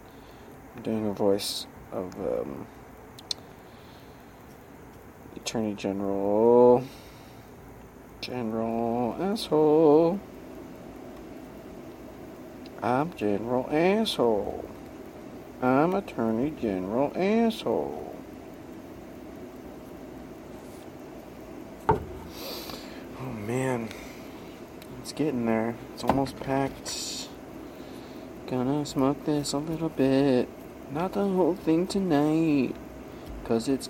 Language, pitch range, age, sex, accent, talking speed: English, 115-165 Hz, 50-69, male, American, 65 wpm